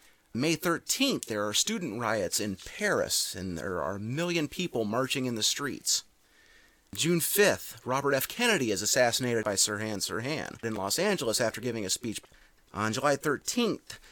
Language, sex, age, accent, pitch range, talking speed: English, male, 30-49, American, 110-165 Hz, 160 wpm